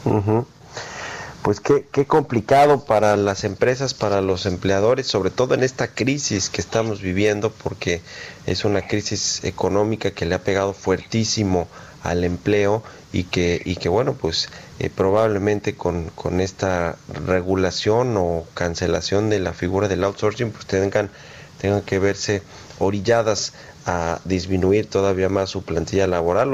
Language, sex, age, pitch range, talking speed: Spanish, male, 40-59, 90-110 Hz, 140 wpm